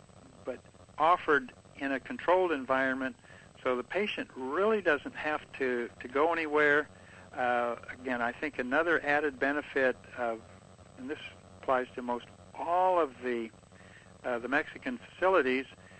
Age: 60-79